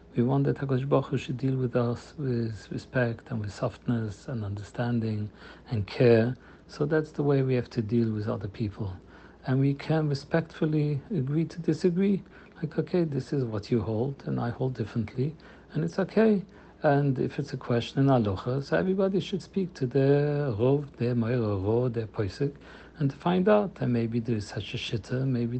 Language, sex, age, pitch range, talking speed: English, male, 60-79, 115-145 Hz, 185 wpm